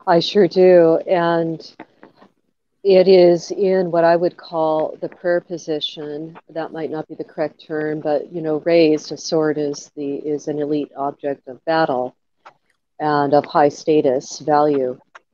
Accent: American